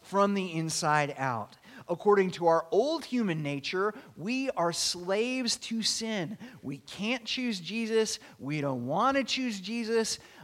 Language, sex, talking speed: English, male, 145 wpm